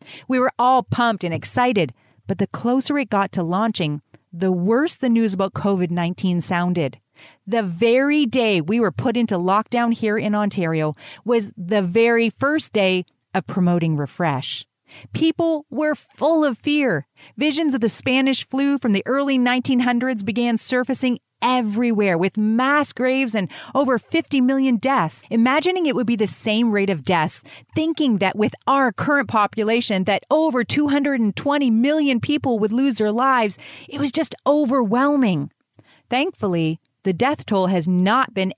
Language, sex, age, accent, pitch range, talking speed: English, female, 40-59, American, 185-260 Hz, 155 wpm